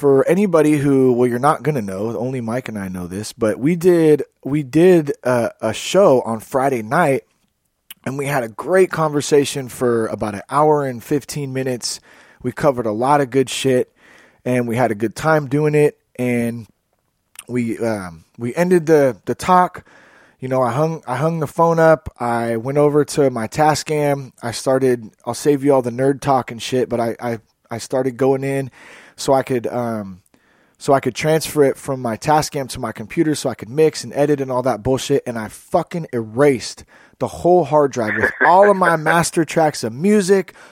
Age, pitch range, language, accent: 20-39, 115-150 Hz, English, American